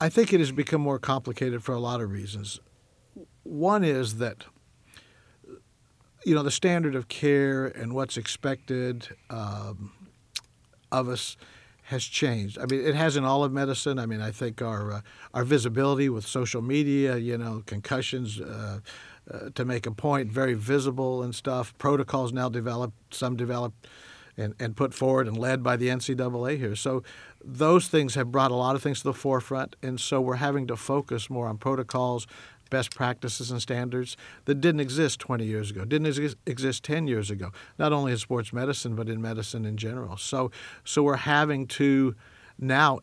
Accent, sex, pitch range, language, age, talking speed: American, male, 115-140 Hz, English, 60-79, 180 wpm